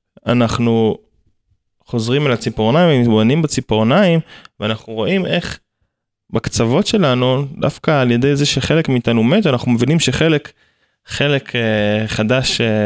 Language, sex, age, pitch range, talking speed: Hebrew, male, 20-39, 110-135 Hz, 105 wpm